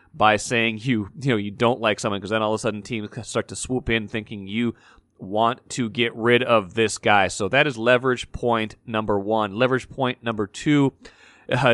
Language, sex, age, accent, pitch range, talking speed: English, male, 30-49, American, 105-125 Hz, 205 wpm